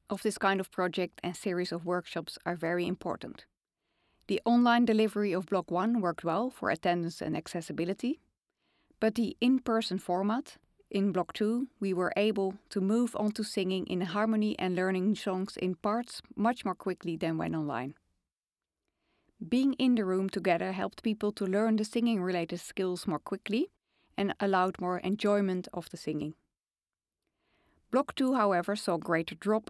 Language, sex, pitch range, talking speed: English, female, 175-220 Hz, 165 wpm